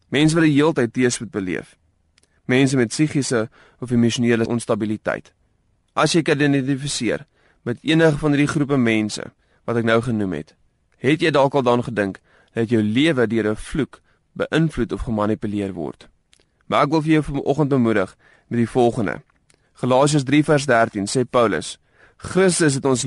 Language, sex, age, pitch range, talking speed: Dutch, male, 20-39, 110-145 Hz, 165 wpm